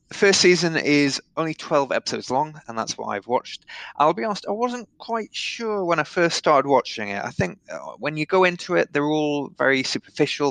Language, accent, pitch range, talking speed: English, British, 110-150 Hz, 205 wpm